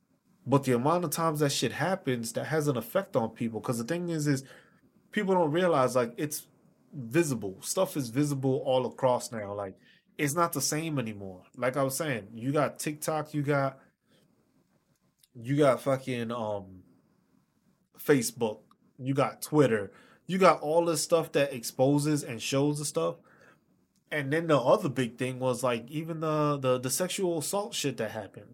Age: 20-39